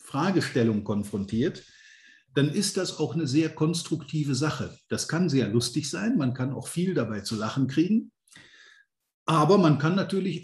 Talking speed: 155 wpm